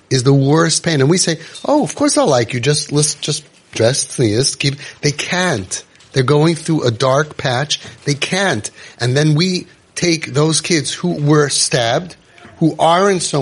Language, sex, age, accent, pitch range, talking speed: English, male, 30-49, American, 115-150 Hz, 190 wpm